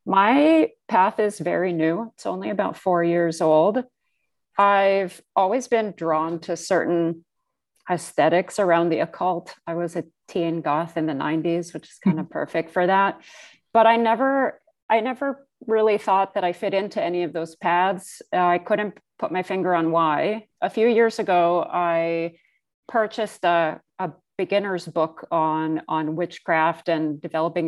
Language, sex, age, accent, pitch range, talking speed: English, female, 40-59, American, 165-200 Hz, 160 wpm